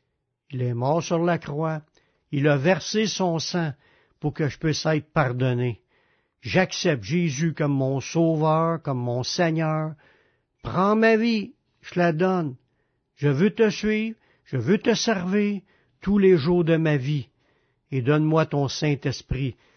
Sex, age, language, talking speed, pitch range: male, 60-79, French, 150 wpm, 130-175 Hz